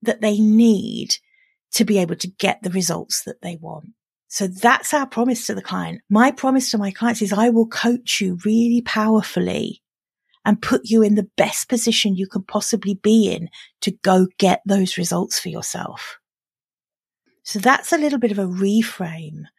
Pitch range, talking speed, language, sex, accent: 185-220 Hz, 180 wpm, English, female, British